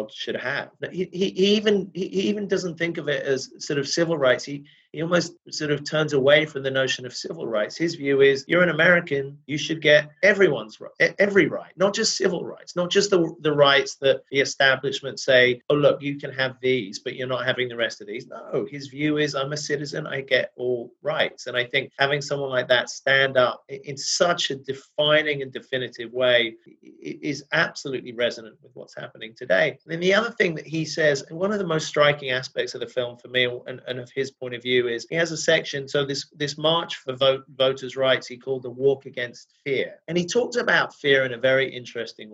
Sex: male